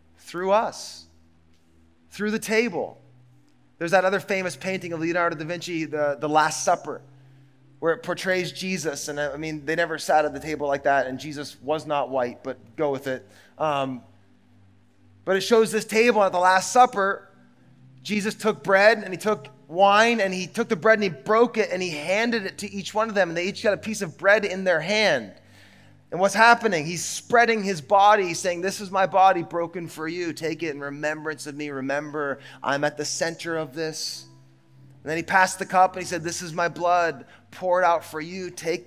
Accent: American